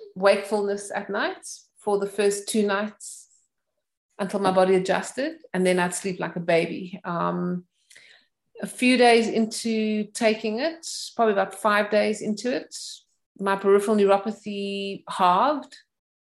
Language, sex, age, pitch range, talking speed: English, female, 30-49, 180-210 Hz, 135 wpm